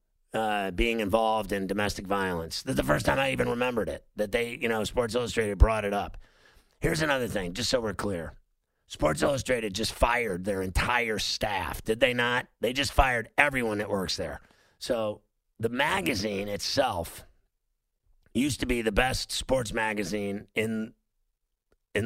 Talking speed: 160 wpm